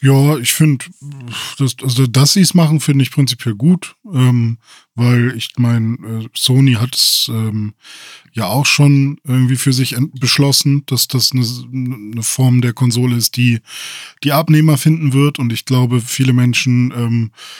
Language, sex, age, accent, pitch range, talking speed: German, male, 10-29, German, 120-145 Hz, 165 wpm